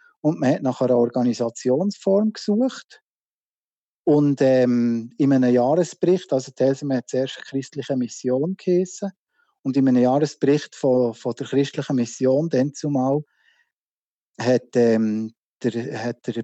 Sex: male